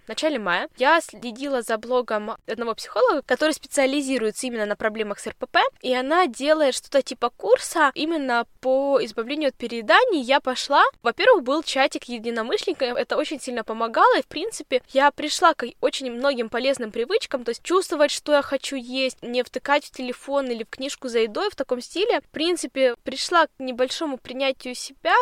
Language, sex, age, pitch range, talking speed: Russian, female, 10-29, 245-300 Hz, 175 wpm